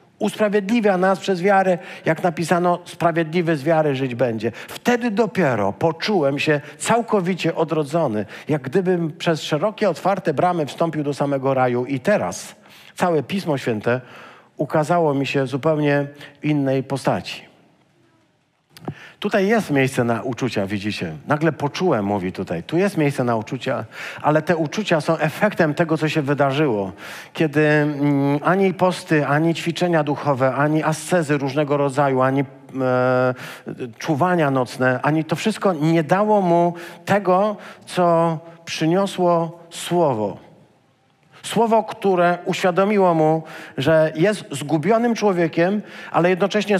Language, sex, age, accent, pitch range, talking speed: Polish, male, 50-69, native, 145-185 Hz, 120 wpm